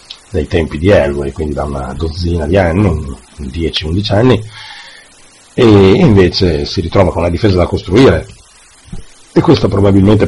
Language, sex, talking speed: Italian, male, 140 wpm